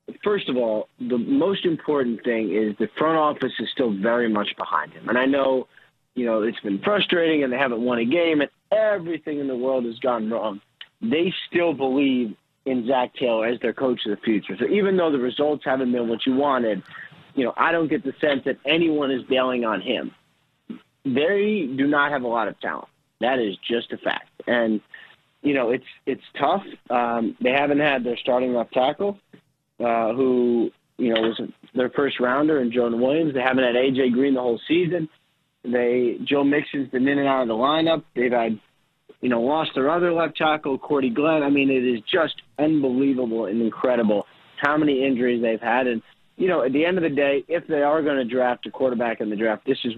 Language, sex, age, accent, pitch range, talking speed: English, male, 30-49, American, 120-150 Hz, 210 wpm